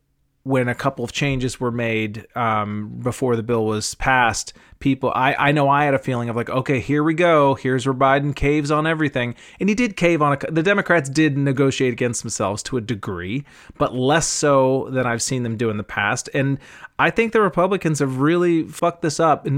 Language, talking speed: English, 210 wpm